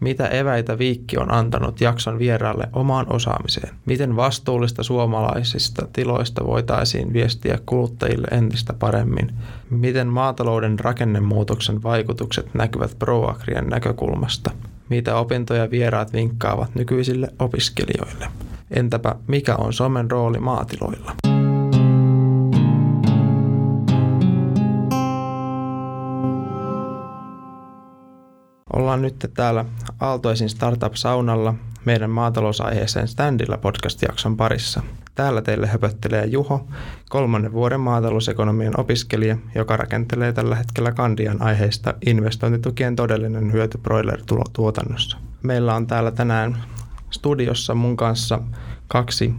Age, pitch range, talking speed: 20-39, 110-125 Hz, 85 wpm